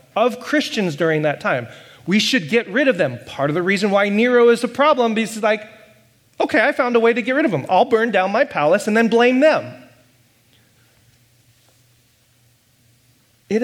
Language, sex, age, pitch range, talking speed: English, male, 30-49, 125-205 Hz, 185 wpm